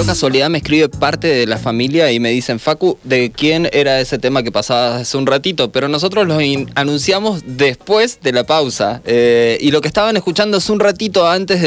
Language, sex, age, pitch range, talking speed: Spanish, male, 20-39, 120-160 Hz, 210 wpm